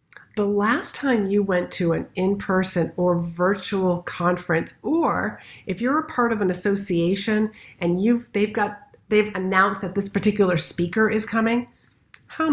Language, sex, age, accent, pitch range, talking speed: English, female, 50-69, American, 170-220 Hz, 155 wpm